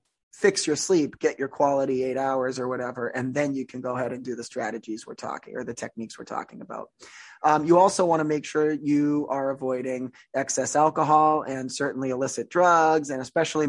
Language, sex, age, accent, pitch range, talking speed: English, male, 20-39, American, 130-170 Hz, 200 wpm